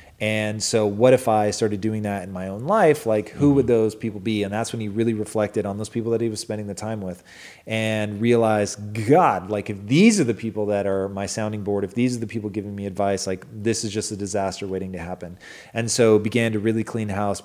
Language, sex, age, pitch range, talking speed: English, male, 30-49, 105-125 Hz, 250 wpm